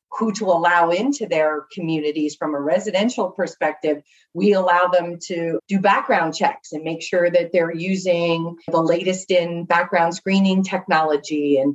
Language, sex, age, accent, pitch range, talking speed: English, female, 30-49, American, 155-180 Hz, 155 wpm